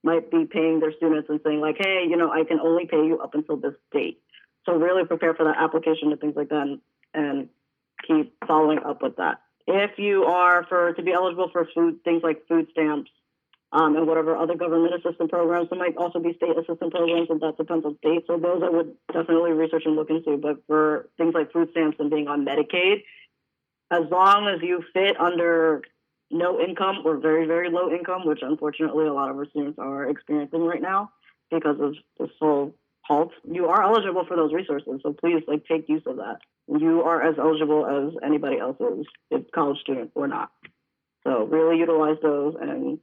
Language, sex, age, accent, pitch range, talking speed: English, female, 20-39, American, 155-175 Hz, 210 wpm